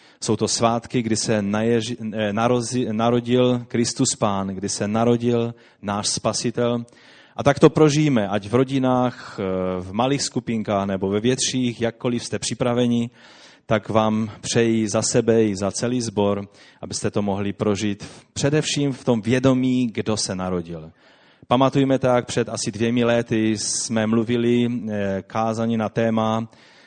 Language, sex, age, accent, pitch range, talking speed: Czech, male, 30-49, native, 105-125 Hz, 135 wpm